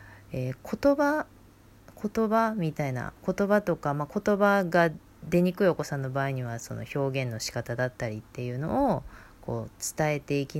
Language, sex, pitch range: Japanese, female, 120-200 Hz